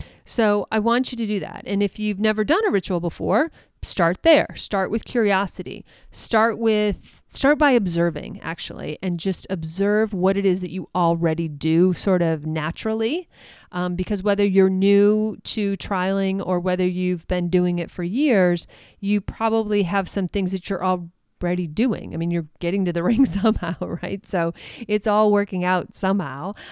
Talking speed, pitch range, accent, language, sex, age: 175 wpm, 180-220 Hz, American, English, female, 40-59